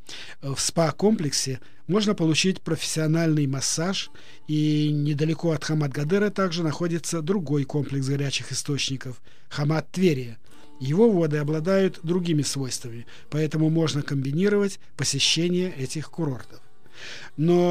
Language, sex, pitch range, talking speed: Russian, male, 145-175 Hz, 100 wpm